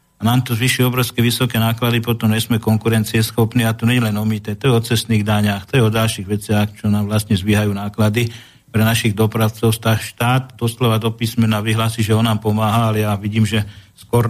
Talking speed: 200 wpm